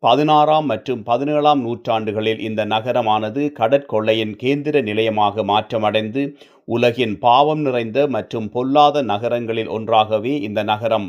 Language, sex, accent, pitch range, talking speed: Tamil, male, native, 110-135 Hz, 105 wpm